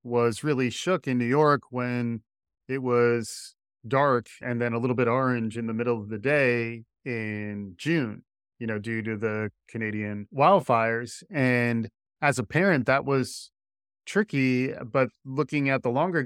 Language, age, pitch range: English, 30-49, 115-145 Hz